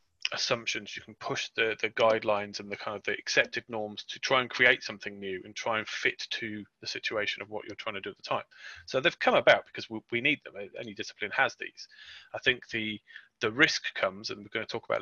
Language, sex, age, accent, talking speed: English, male, 30-49, British, 245 wpm